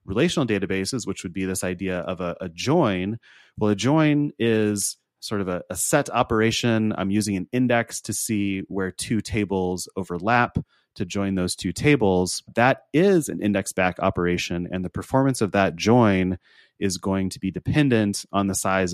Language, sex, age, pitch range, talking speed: English, male, 30-49, 90-110 Hz, 175 wpm